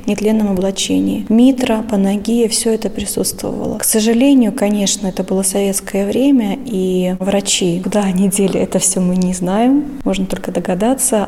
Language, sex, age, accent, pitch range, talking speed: Russian, female, 20-39, native, 190-225 Hz, 140 wpm